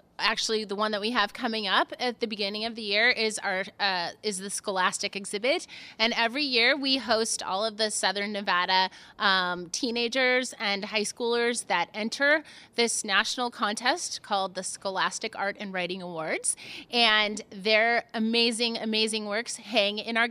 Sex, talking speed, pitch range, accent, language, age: female, 165 wpm, 195-235 Hz, American, English, 30-49